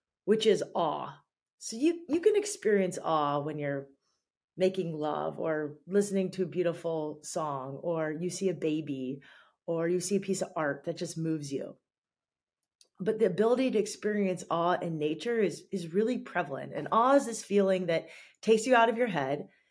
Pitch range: 165-210 Hz